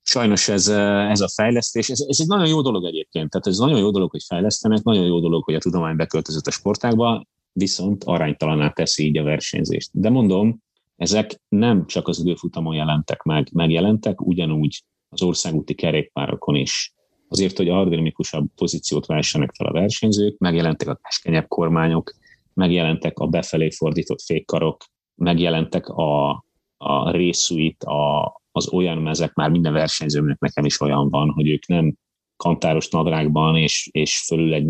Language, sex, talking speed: Hungarian, male, 155 wpm